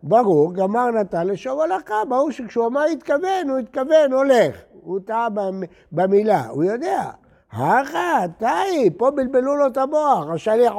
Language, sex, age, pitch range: Hebrew, male, 60-79, 170-220 Hz